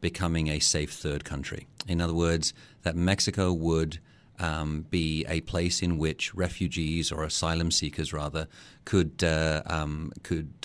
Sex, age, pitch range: male, 40-59, 80-95 Hz